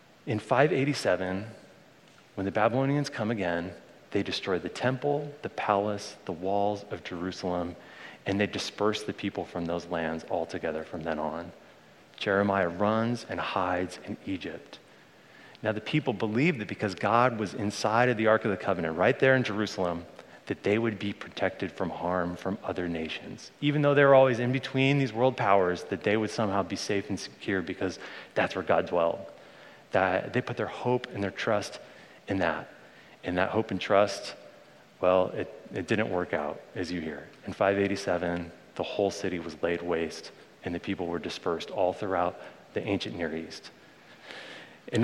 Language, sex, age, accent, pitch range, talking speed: English, male, 30-49, American, 90-120 Hz, 175 wpm